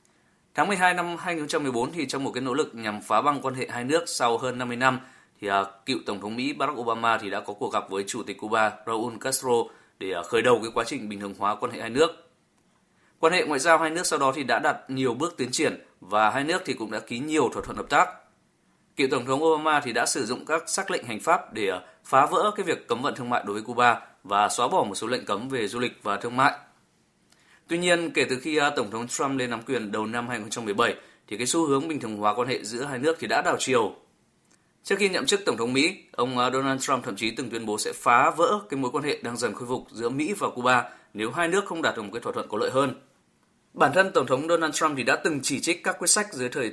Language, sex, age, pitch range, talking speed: Vietnamese, male, 20-39, 110-155 Hz, 265 wpm